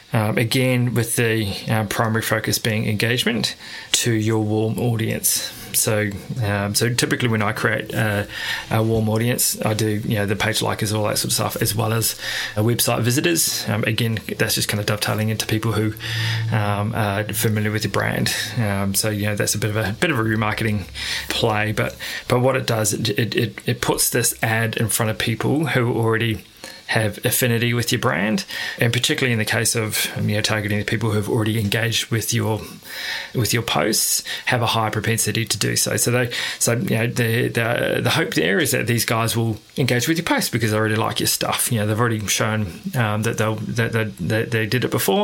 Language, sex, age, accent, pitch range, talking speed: English, male, 20-39, Australian, 105-120 Hz, 215 wpm